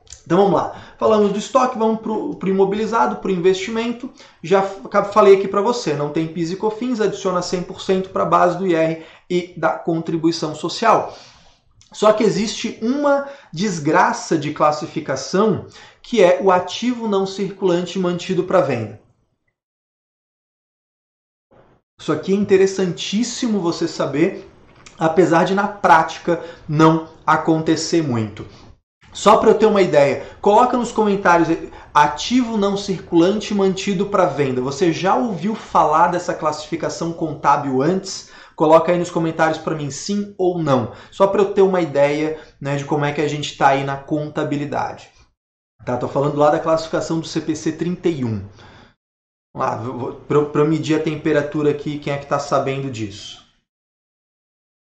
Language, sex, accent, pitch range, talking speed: Portuguese, male, Brazilian, 150-195 Hz, 145 wpm